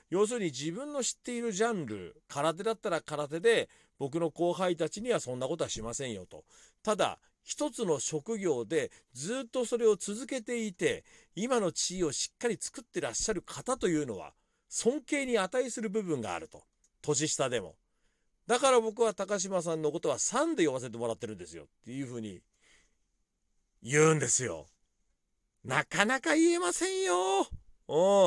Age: 40-59